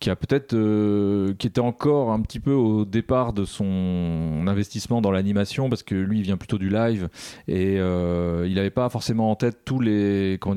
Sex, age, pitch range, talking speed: male, 30-49, 90-110 Hz, 205 wpm